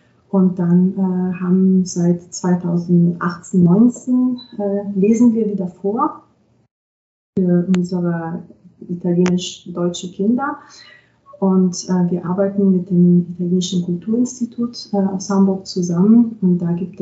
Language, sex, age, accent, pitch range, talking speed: German, female, 30-49, German, 175-195 Hz, 110 wpm